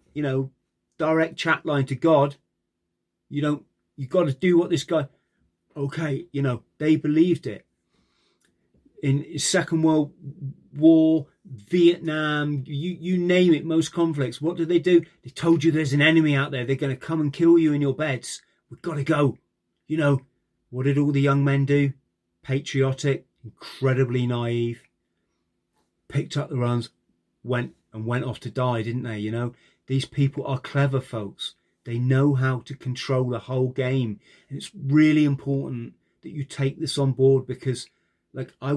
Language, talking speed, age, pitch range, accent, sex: English, 175 wpm, 30-49, 120-145 Hz, British, male